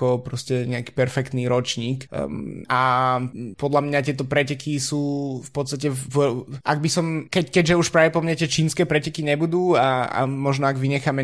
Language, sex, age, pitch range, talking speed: Slovak, male, 20-39, 130-145 Hz, 170 wpm